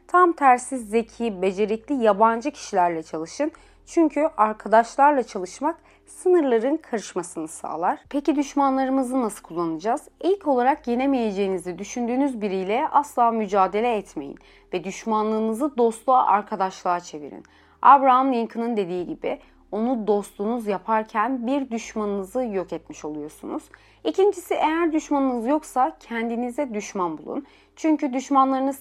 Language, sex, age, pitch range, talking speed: Turkish, female, 30-49, 205-280 Hz, 105 wpm